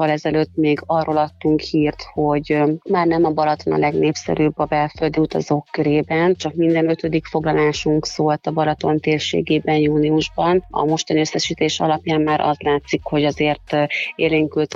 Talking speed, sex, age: 140 wpm, female, 30-49